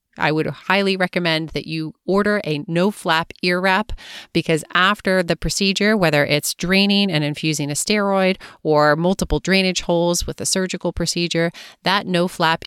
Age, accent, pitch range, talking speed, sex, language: 30-49, American, 150-185 Hz, 150 wpm, female, English